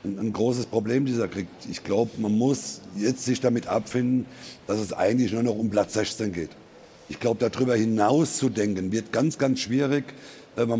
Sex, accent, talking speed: male, German, 185 wpm